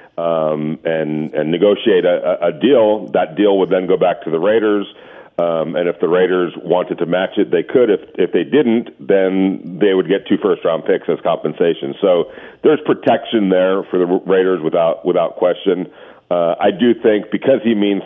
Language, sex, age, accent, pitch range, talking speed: English, male, 40-59, American, 90-125 Hz, 195 wpm